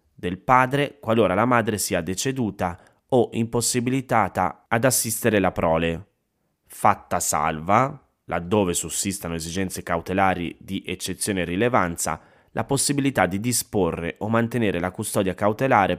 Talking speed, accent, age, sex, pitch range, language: 120 wpm, native, 30-49, male, 90-115 Hz, Italian